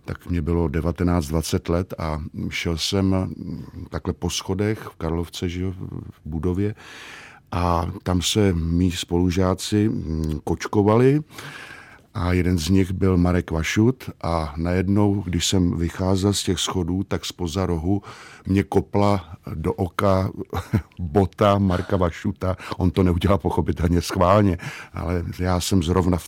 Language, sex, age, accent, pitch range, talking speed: Czech, male, 50-69, native, 85-100 Hz, 130 wpm